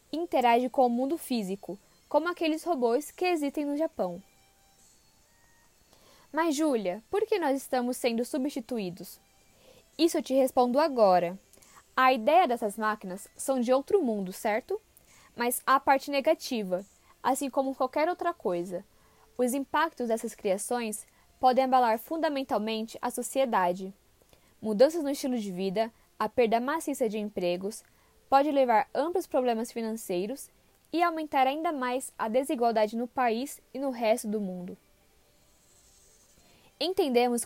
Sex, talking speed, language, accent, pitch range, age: female, 130 wpm, Portuguese, Brazilian, 215-290 Hz, 10-29